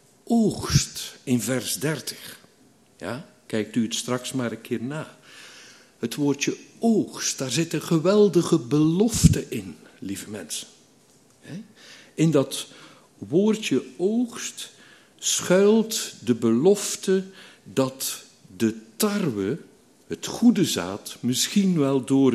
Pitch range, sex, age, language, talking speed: 125-190 Hz, male, 60-79, Dutch, 105 wpm